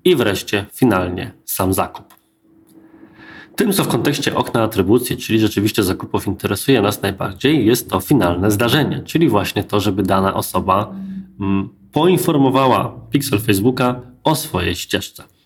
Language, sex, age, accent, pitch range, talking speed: Polish, male, 20-39, native, 105-140 Hz, 130 wpm